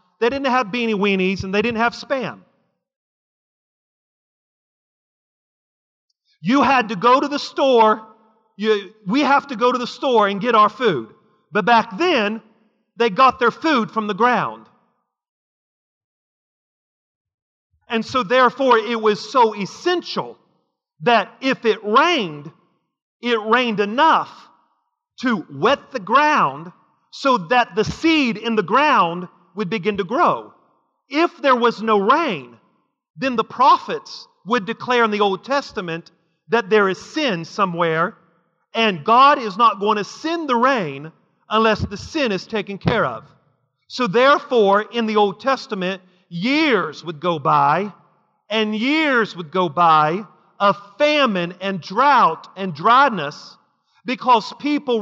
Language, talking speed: English, 135 wpm